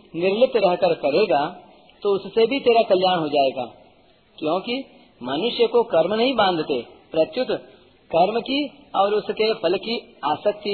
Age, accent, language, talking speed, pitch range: 40-59, native, Hindi, 135 wpm, 180-230 Hz